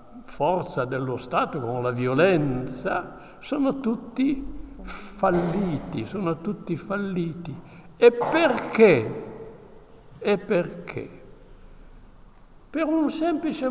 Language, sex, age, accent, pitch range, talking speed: Italian, male, 60-79, native, 165-250 Hz, 85 wpm